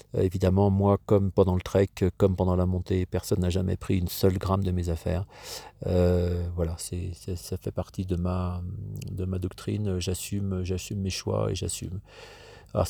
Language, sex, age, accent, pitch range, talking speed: French, male, 40-59, French, 90-105 Hz, 180 wpm